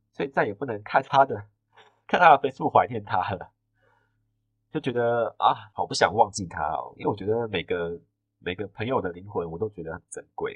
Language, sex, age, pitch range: Chinese, male, 30-49, 95-110 Hz